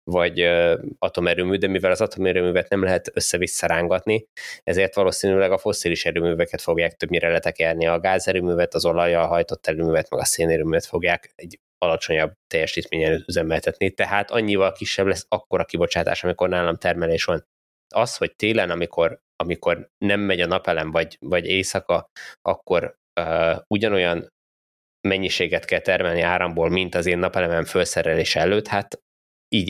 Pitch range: 85-95 Hz